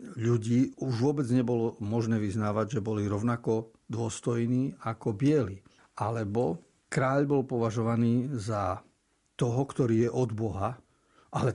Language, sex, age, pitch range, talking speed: Slovak, male, 50-69, 110-130 Hz, 120 wpm